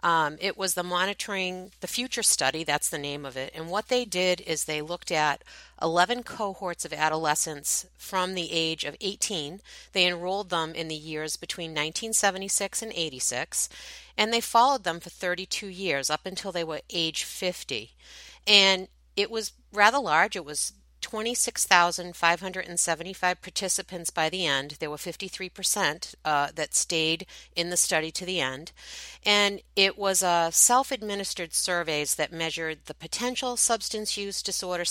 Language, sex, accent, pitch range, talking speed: English, female, American, 155-200 Hz, 155 wpm